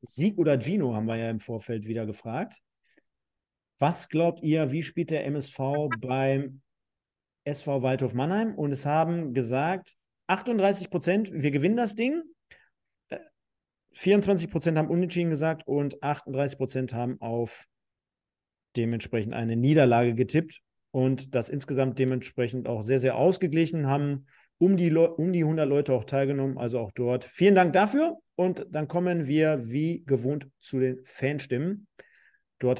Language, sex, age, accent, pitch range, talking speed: German, male, 40-59, German, 130-175 Hz, 145 wpm